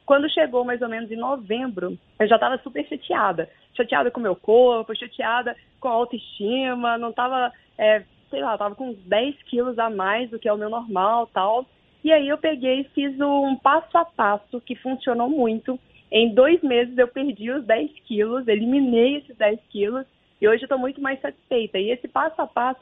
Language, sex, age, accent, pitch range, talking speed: Portuguese, female, 20-39, Brazilian, 230-280 Hz, 200 wpm